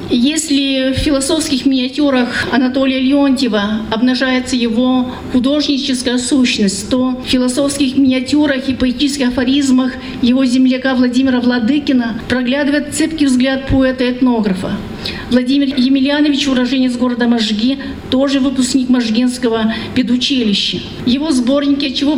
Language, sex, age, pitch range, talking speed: Russian, female, 40-59, 245-275 Hz, 100 wpm